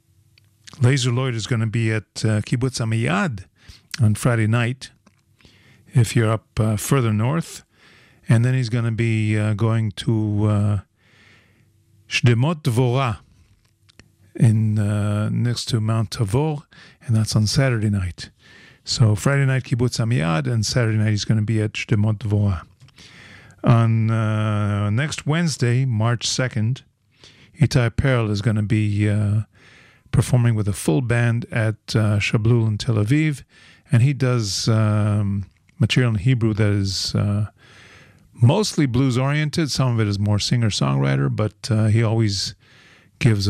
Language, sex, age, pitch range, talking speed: English, male, 50-69, 105-130 Hz, 140 wpm